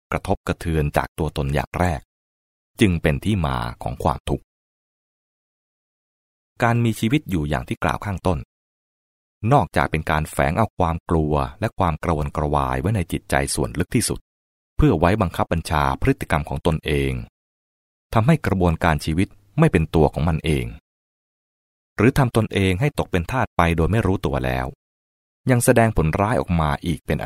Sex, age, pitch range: male, 20-39, 70-100 Hz